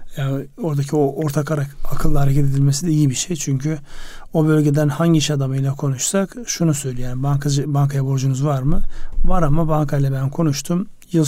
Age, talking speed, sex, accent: 40-59, 170 wpm, male, native